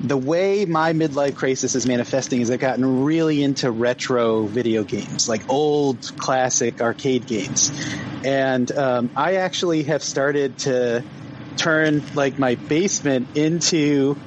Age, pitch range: 30-49, 125-150 Hz